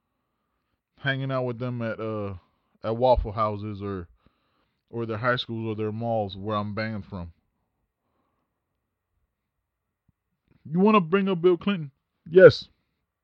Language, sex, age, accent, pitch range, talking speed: English, male, 20-39, American, 105-135 Hz, 130 wpm